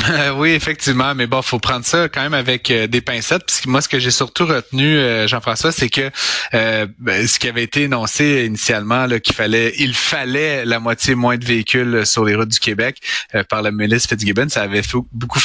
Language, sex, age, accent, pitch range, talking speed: French, male, 30-49, Canadian, 110-140 Hz, 220 wpm